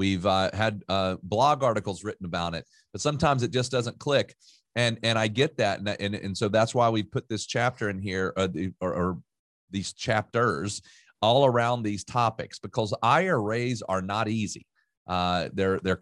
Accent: American